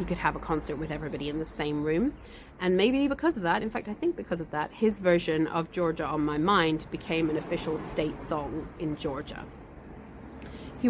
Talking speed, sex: 205 wpm, female